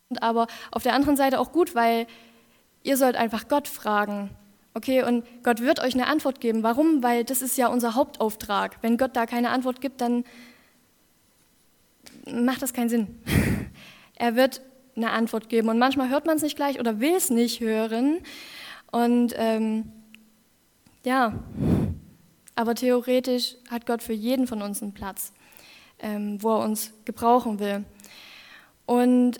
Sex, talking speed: female, 155 wpm